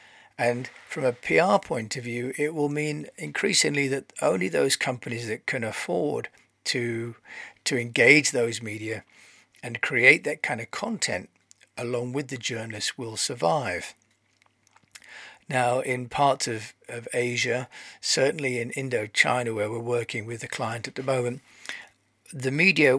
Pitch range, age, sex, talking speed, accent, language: 120-140 Hz, 40-59, male, 145 wpm, British, English